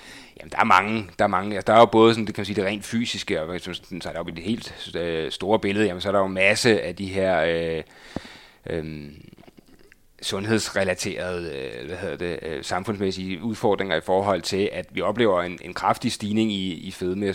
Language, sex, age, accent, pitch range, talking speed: Danish, male, 30-49, native, 90-110 Hz, 210 wpm